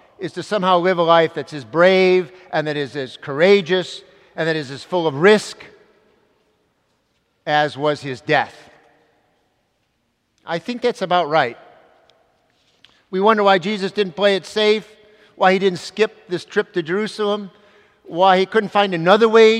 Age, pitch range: 50-69, 145-195 Hz